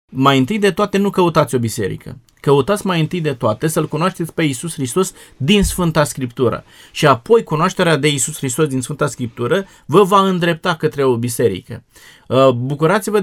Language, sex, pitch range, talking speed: Romanian, male, 145-190 Hz, 170 wpm